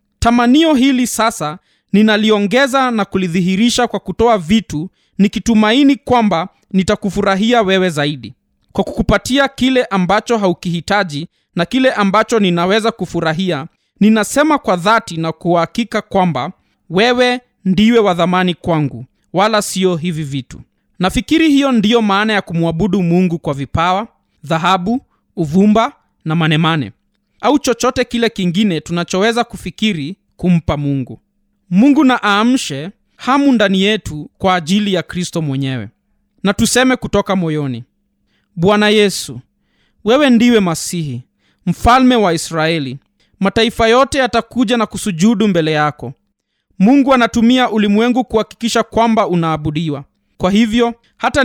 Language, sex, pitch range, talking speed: Swahili, male, 170-230 Hz, 115 wpm